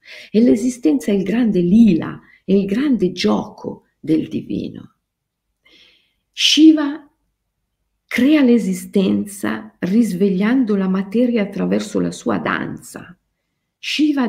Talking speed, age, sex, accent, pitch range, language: 95 wpm, 50-69, female, native, 165-235 Hz, Italian